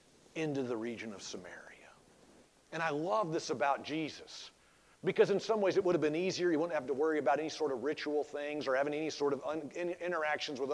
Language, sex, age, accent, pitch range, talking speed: English, male, 40-59, American, 135-175 Hz, 220 wpm